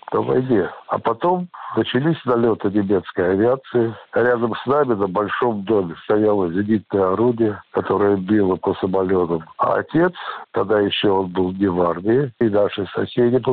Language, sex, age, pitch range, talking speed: Russian, male, 60-79, 100-120 Hz, 140 wpm